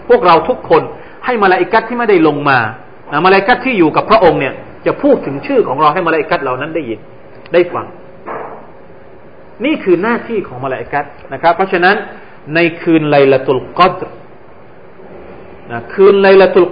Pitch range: 155-205 Hz